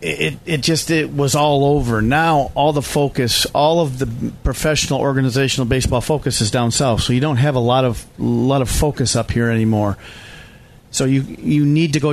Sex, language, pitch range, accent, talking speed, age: male, English, 120-155 Hz, American, 200 wpm, 40-59